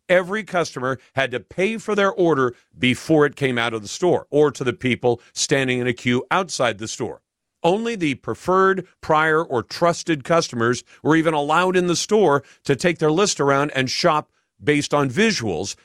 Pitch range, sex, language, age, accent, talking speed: 125-175 Hz, male, English, 50-69, American, 185 wpm